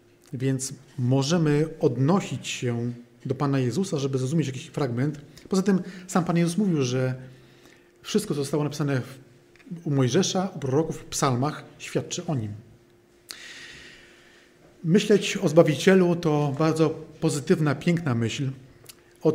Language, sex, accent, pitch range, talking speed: Polish, male, native, 130-160 Hz, 125 wpm